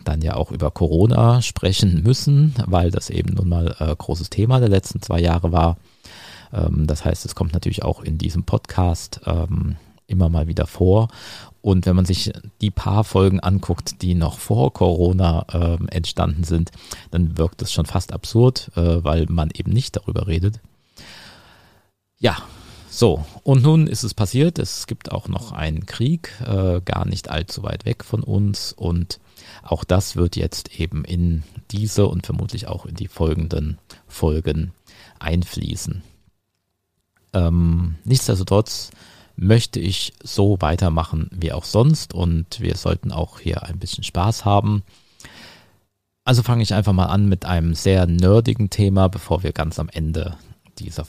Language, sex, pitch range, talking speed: German, male, 85-105 Hz, 160 wpm